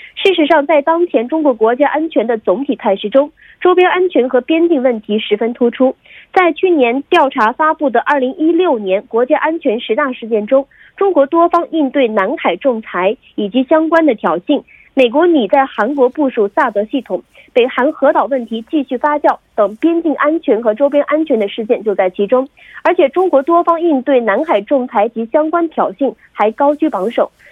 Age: 30-49